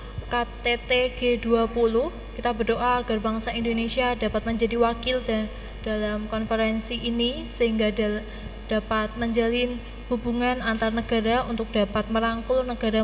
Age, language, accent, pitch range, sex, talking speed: 20-39, Indonesian, native, 220-240 Hz, female, 105 wpm